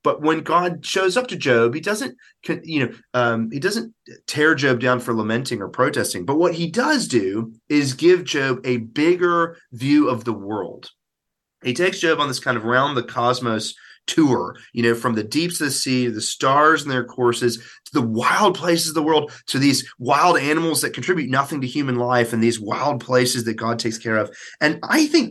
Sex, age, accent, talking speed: male, 30-49, American, 210 wpm